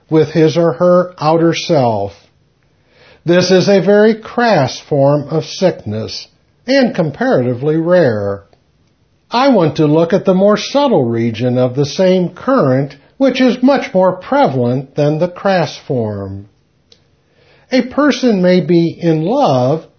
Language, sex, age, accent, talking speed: English, male, 60-79, American, 135 wpm